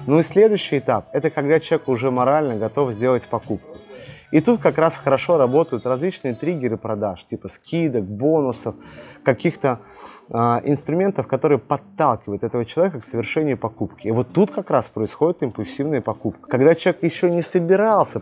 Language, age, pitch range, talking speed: Russian, 30-49, 110-155 Hz, 150 wpm